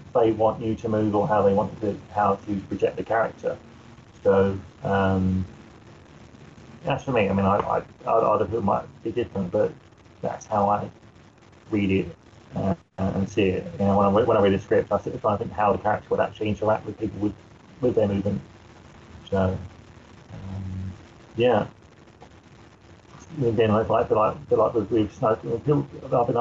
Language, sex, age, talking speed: English, male, 30-49, 170 wpm